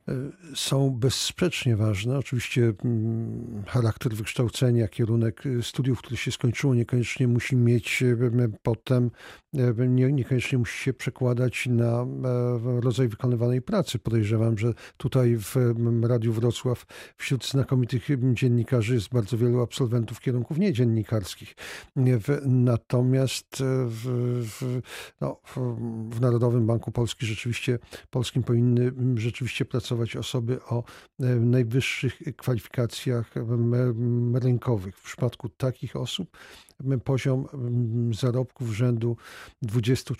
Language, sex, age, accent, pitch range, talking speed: Polish, male, 50-69, native, 120-130 Hz, 95 wpm